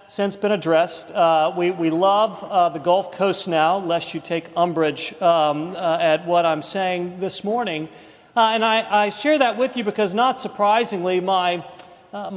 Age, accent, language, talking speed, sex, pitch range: 40-59, American, English, 180 wpm, male, 170-205 Hz